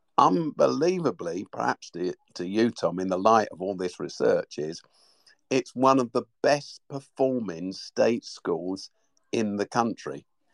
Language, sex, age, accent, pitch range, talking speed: English, male, 50-69, British, 95-115 Hz, 140 wpm